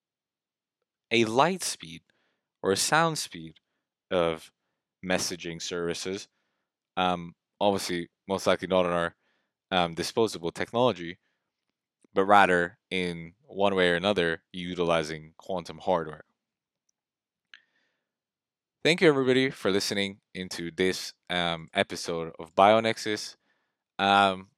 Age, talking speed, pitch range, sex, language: 20-39, 105 wpm, 85-100 Hz, male, English